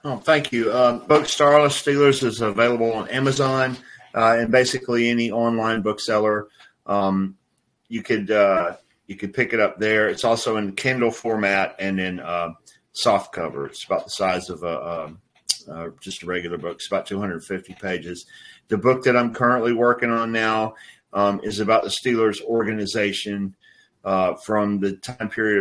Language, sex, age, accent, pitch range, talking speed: English, male, 40-59, American, 100-115 Hz, 175 wpm